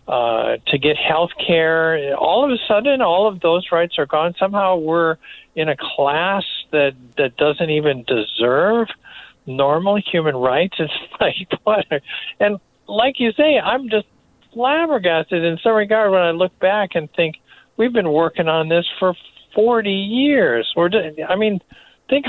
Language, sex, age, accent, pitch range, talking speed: English, male, 50-69, American, 150-195 Hz, 165 wpm